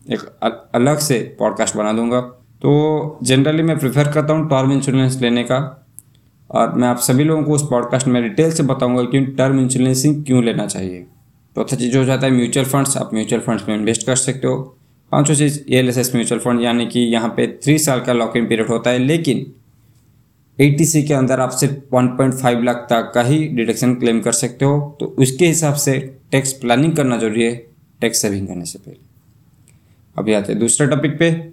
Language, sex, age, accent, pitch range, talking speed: Hindi, male, 20-39, native, 120-145 Hz, 200 wpm